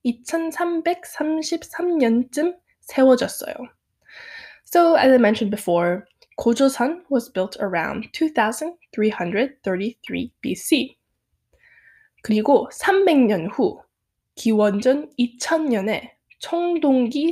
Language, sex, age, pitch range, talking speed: English, female, 10-29, 215-320 Hz, 65 wpm